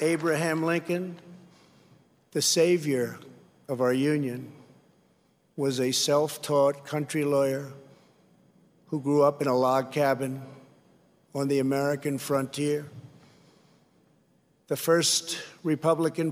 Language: English